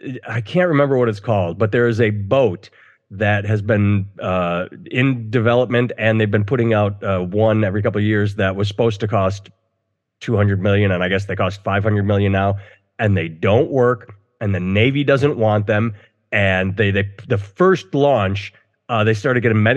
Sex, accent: male, American